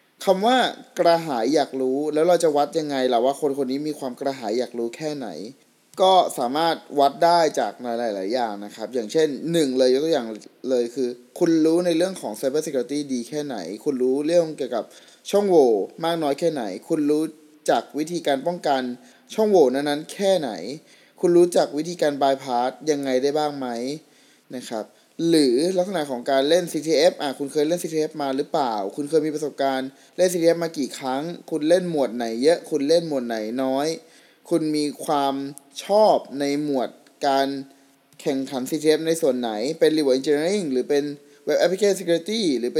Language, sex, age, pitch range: Thai, male, 20-39, 135-170 Hz